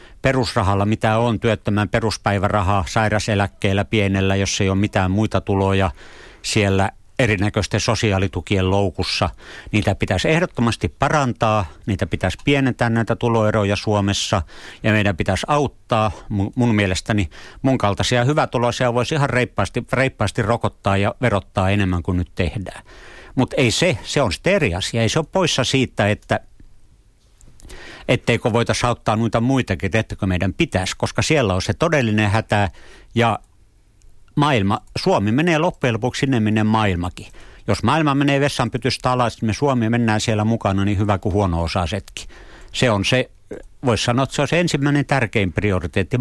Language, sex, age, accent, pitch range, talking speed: Finnish, male, 60-79, native, 100-125 Hz, 145 wpm